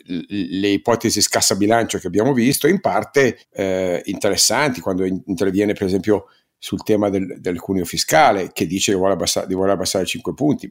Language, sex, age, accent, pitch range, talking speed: Italian, male, 50-69, native, 95-105 Hz, 175 wpm